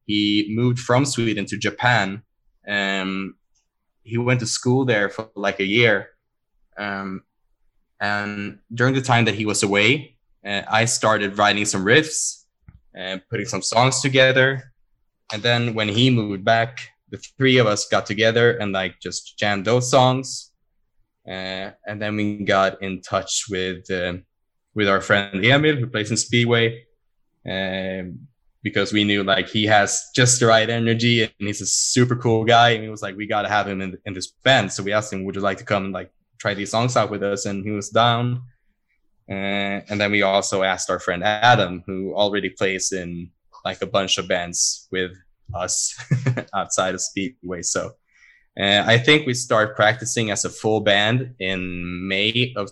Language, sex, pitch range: English, male, 95-115 Hz